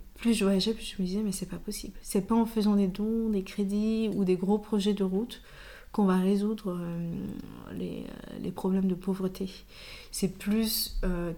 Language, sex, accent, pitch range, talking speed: French, female, French, 185-215 Hz, 200 wpm